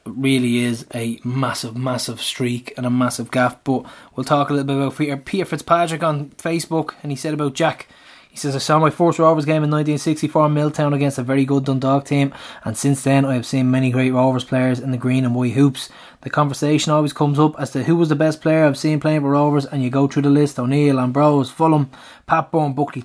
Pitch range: 130-150 Hz